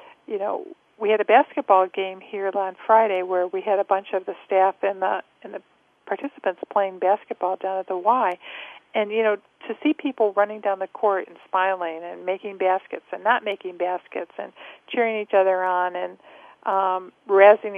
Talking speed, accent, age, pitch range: 190 wpm, American, 50-69, 190-220 Hz